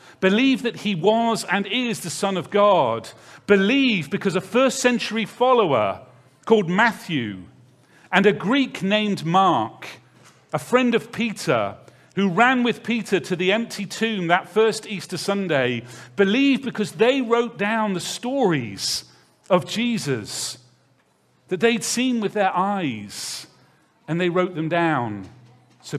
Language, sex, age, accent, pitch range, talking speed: English, male, 40-59, British, 170-225 Hz, 140 wpm